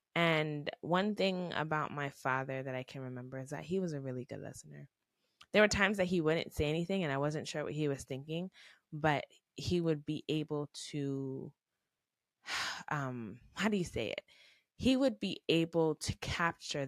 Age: 20-39